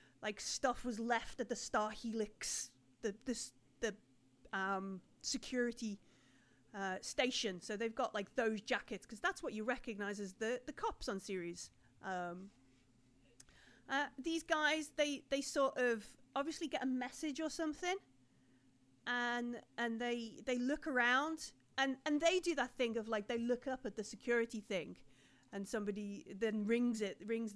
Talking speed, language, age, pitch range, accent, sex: 160 wpm, English, 30-49, 210-275 Hz, British, female